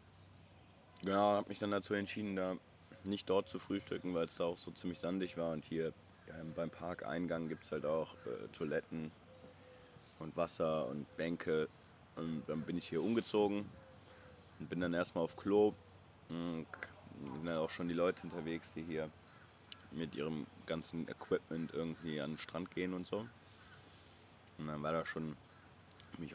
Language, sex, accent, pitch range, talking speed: German, male, German, 80-100 Hz, 165 wpm